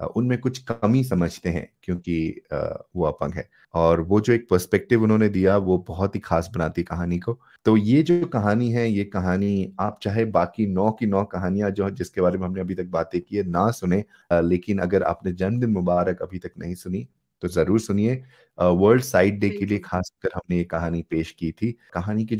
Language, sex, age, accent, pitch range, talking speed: Hindi, male, 30-49, native, 90-120 Hz, 205 wpm